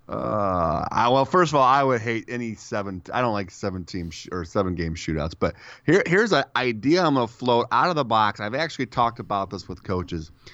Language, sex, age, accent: English, male, 30-49, American